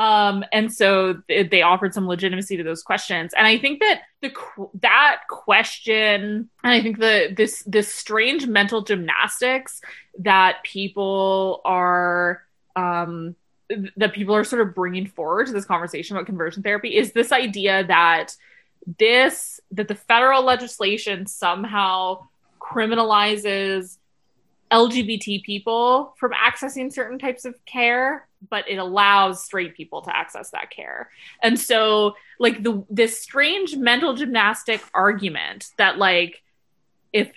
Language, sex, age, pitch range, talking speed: English, female, 20-39, 190-235 Hz, 135 wpm